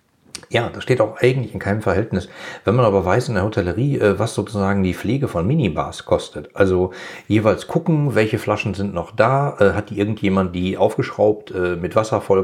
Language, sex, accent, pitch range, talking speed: German, male, German, 95-120 Hz, 185 wpm